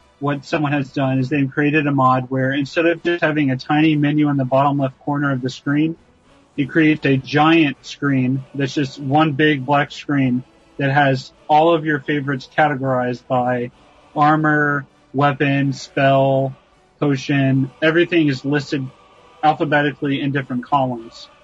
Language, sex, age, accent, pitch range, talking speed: English, male, 30-49, American, 130-150 Hz, 155 wpm